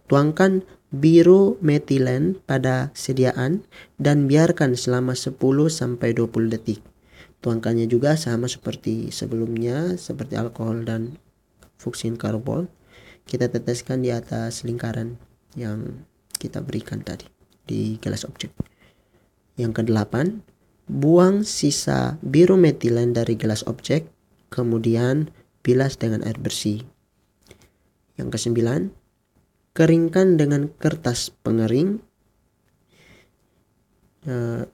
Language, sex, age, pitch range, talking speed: Indonesian, male, 20-39, 115-140 Hz, 95 wpm